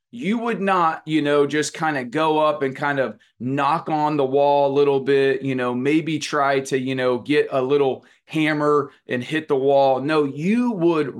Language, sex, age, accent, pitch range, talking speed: English, male, 30-49, American, 130-175 Hz, 205 wpm